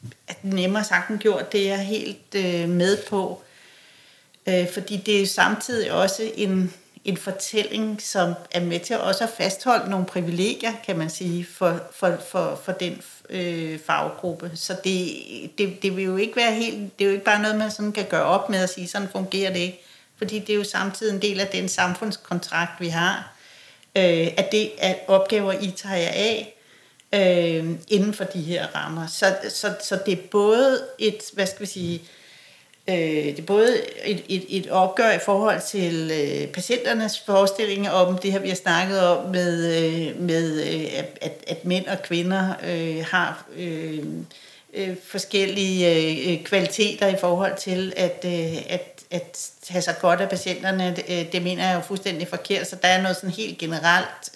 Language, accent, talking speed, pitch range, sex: Danish, native, 170 wpm, 175-200 Hz, female